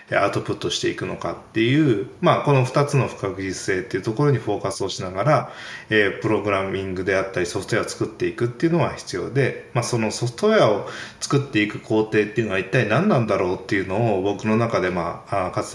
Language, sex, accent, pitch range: Japanese, male, native, 105-170 Hz